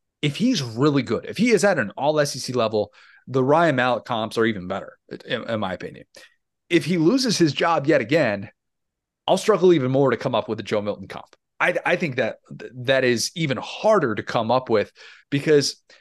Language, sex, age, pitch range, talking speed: English, male, 30-49, 110-160 Hz, 200 wpm